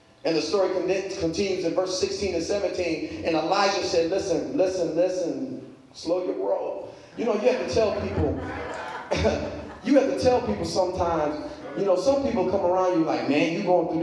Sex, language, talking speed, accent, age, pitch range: male, English, 190 wpm, American, 30-49, 175-255 Hz